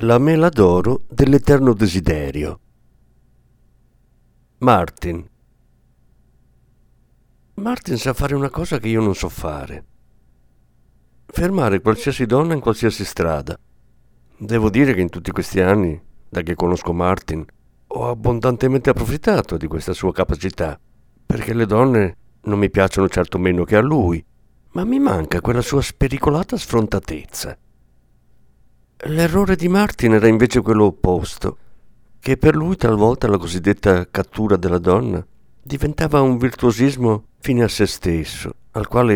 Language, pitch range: Italian, 85-130 Hz